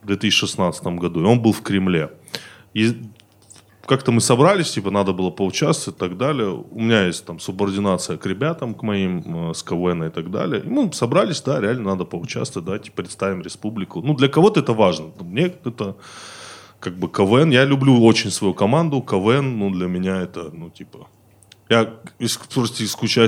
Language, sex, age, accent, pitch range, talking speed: Russian, male, 20-39, native, 95-120 Hz, 180 wpm